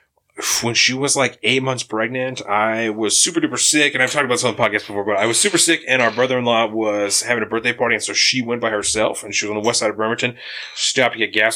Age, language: 30-49, English